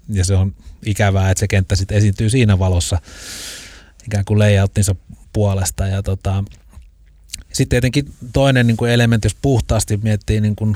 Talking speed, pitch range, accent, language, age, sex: 145 wpm, 95-105 Hz, native, Finnish, 30-49, male